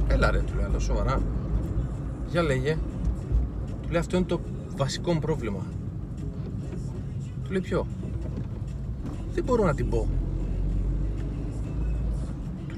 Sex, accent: male, native